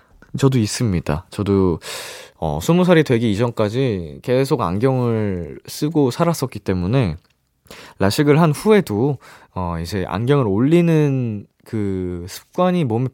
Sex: male